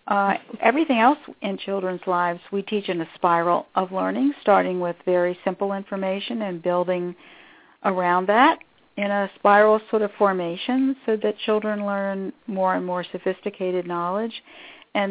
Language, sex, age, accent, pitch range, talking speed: English, female, 50-69, American, 185-225 Hz, 150 wpm